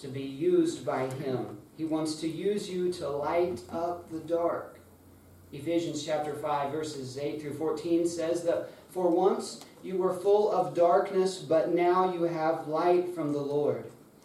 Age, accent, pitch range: 40-59, American, 130-170 Hz